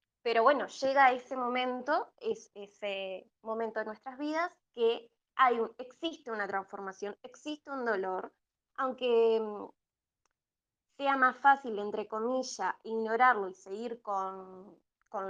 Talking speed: 110 wpm